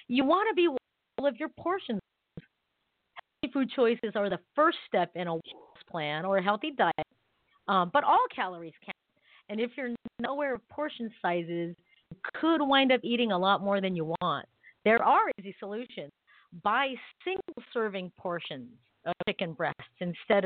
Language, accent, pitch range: English, American, 180-245 Hz